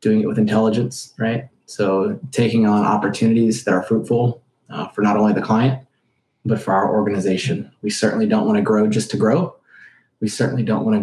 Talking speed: 185 wpm